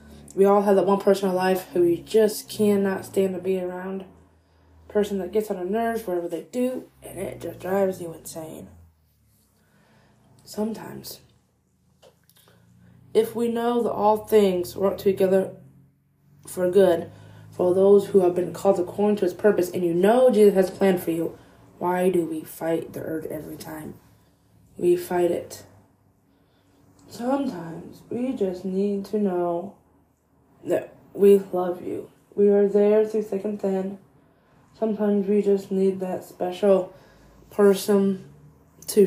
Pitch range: 160-205 Hz